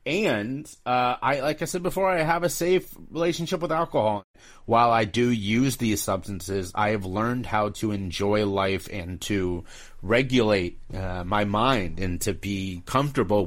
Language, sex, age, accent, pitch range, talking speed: English, male, 30-49, American, 95-115 Hz, 165 wpm